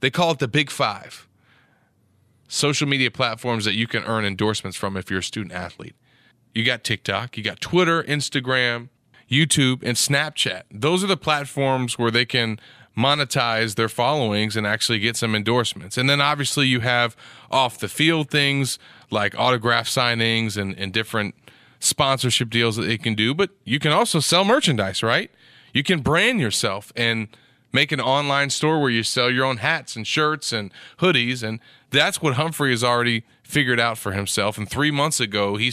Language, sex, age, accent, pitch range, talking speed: English, male, 30-49, American, 115-140 Hz, 175 wpm